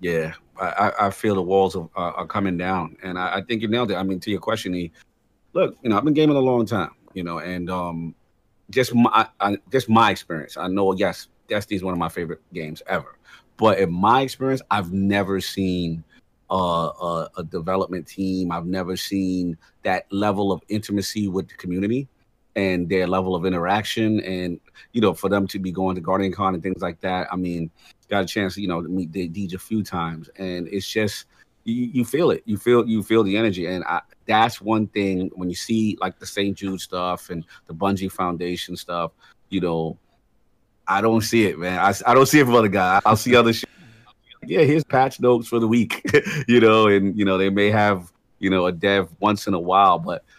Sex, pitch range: male, 90-110 Hz